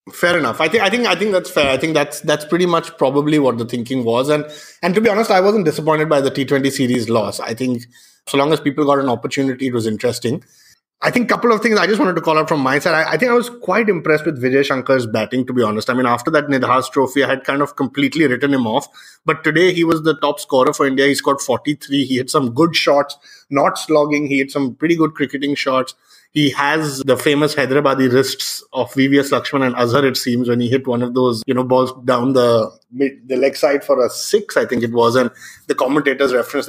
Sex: male